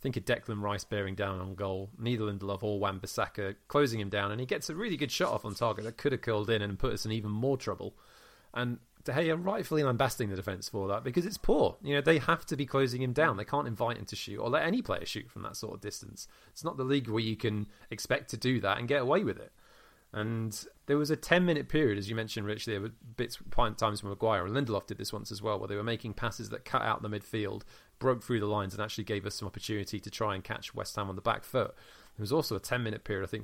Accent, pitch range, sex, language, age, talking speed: British, 105-125 Hz, male, English, 30-49, 275 wpm